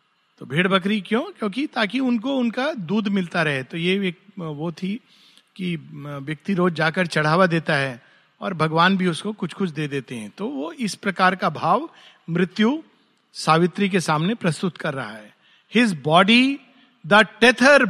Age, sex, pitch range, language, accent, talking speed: 50-69, male, 165-220 Hz, Hindi, native, 155 wpm